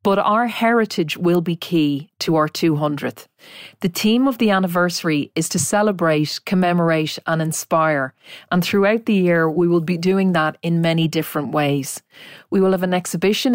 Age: 40-59